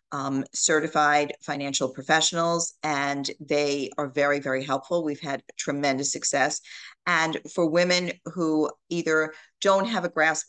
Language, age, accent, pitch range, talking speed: English, 40-59, American, 145-165 Hz, 130 wpm